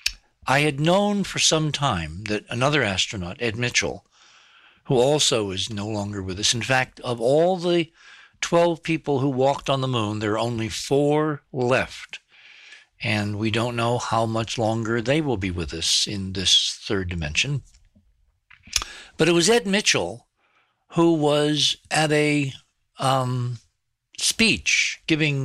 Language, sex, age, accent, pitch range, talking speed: English, male, 60-79, American, 110-150 Hz, 150 wpm